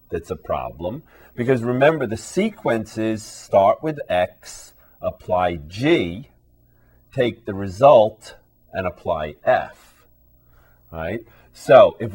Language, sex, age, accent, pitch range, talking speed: English, male, 40-59, American, 80-110 Hz, 100 wpm